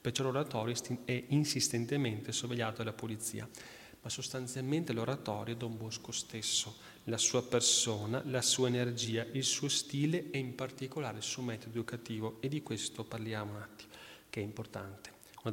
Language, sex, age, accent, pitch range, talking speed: Italian, male, 30-49, native, 110-135 Hz, 155 wpm